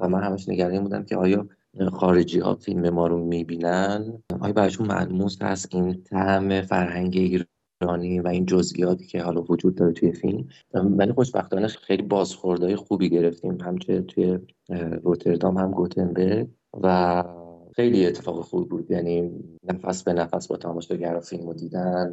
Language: Persian